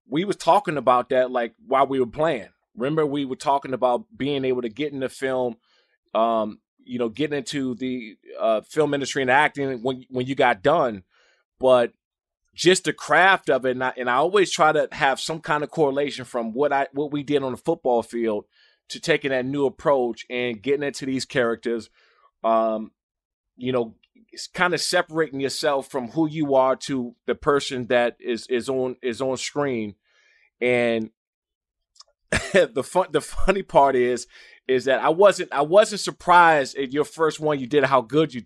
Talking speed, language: 185 wpm, English